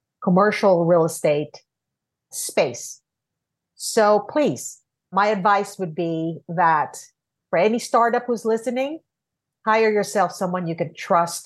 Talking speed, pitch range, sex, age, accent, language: 115 wpm, 170-225 Hz, female, 50-69, American, English